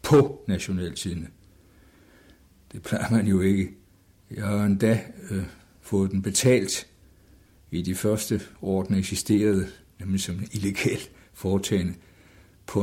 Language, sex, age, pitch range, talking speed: Danish, male, 60-79, 90-100 Hz, 120 wpm